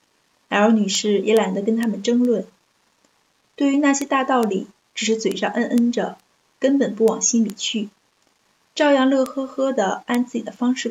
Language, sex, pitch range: Chinese, female, 210-255 Hz